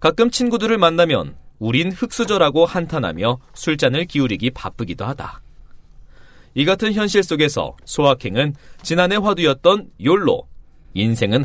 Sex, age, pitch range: male, 40-59, 130-200 Hz